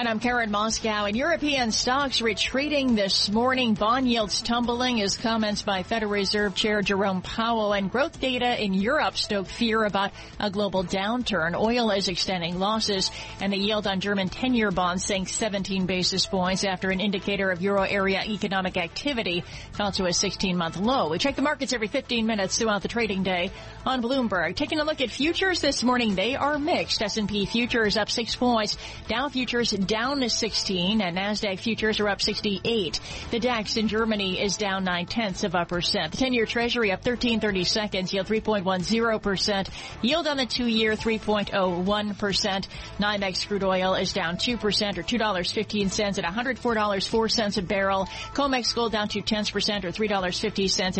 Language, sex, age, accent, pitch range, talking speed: English, female, 40-59, American, 195-230 Hz, 170 wpm